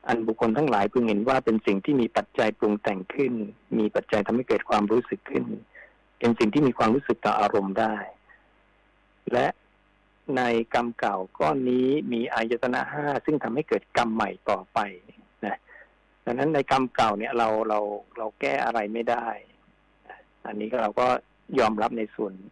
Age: 60-79